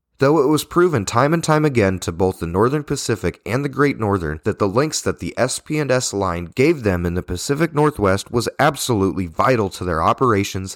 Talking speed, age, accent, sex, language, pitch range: 200 wpm, 30-49, American, male, English, 90-135 Hz